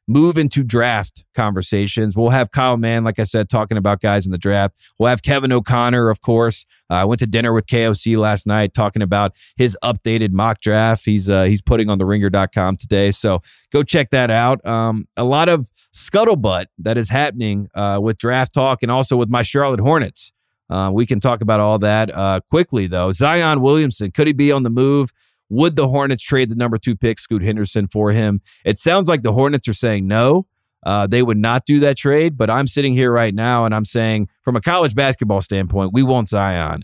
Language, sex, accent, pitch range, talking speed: English, male, American, 105-135 Hz, 215 wpm